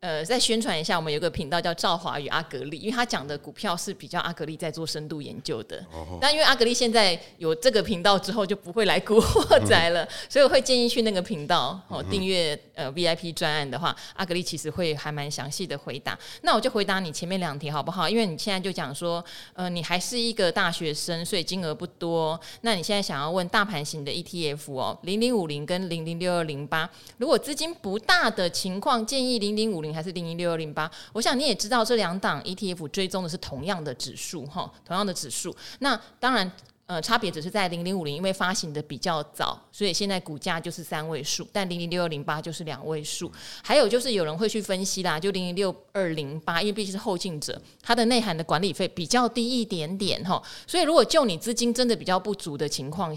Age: 20-39